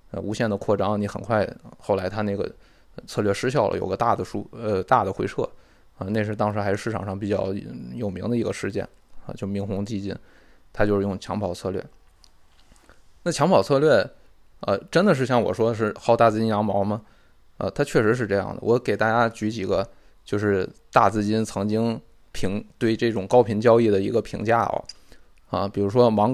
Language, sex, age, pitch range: Chinese, male, 20-39, 100-115 Hz